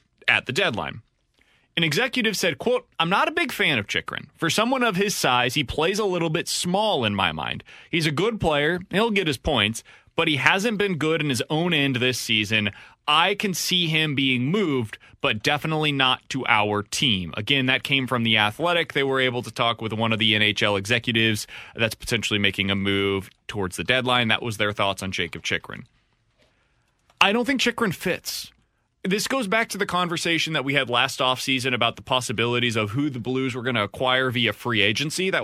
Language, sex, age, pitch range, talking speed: English, male, 30-49, 115-180 Hz, 210 wpm